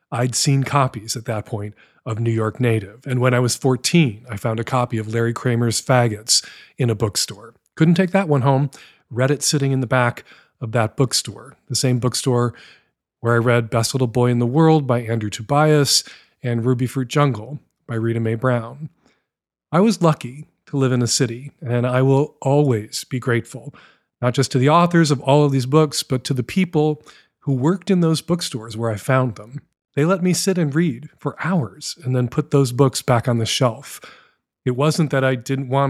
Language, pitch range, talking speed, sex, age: English, 120-150 Hz, 205 wpm, male, 40-59